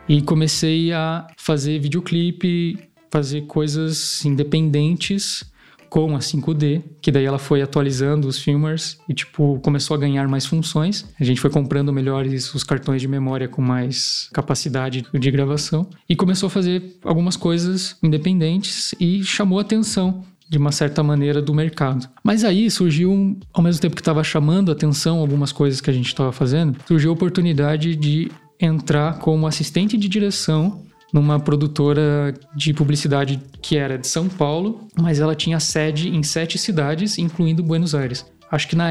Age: 20-39